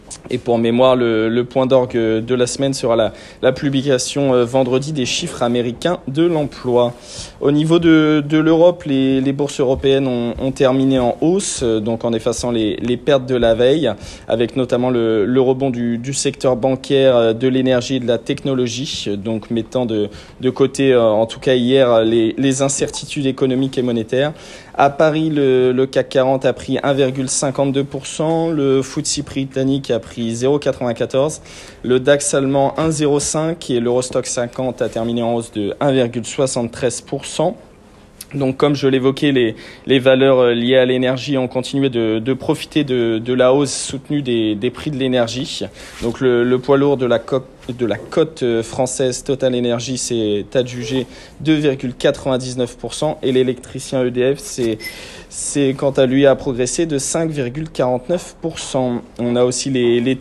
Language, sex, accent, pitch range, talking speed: French, male, French, 120-140 Hz, 155 wpm